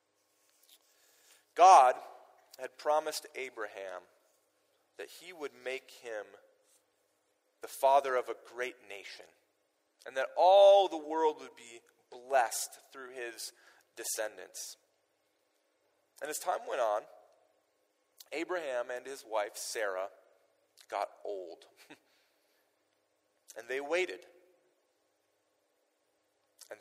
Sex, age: male, 40-59